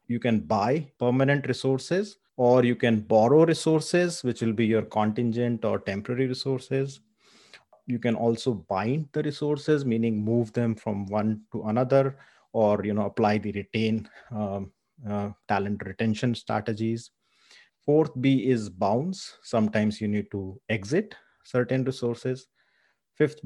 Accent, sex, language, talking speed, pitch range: Indian, male, English, 140 wpm, 105-130 Hz